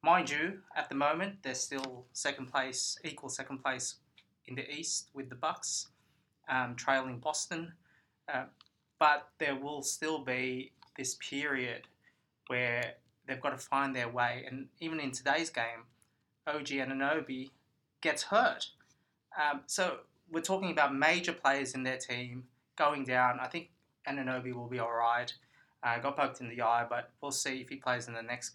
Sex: male